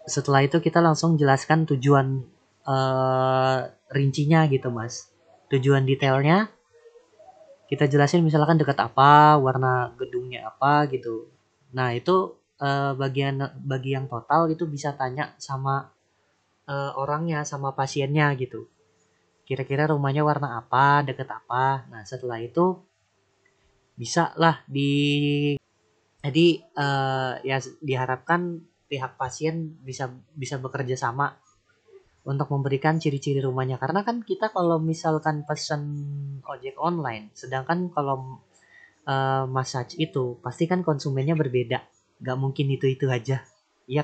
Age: 20-39